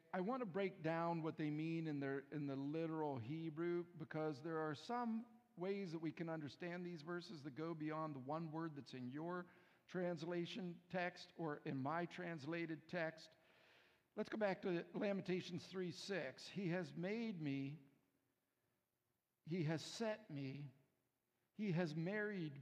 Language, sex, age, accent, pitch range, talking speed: English, male, 60-79, American, 140-185 Hz, 155 wpm